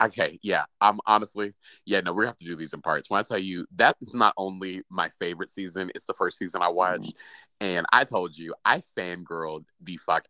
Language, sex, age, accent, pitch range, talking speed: English, male, 30-49, American, 90-120 Hz, 225 wpm